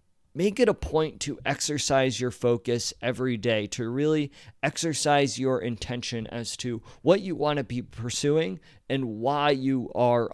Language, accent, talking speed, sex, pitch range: English, American, 155 wpm, male, 120-170 Hz